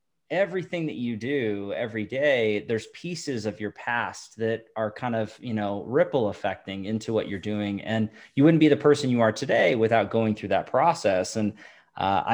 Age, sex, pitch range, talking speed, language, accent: 20-39, male, 105-140 Hz, 190 wpm, English, American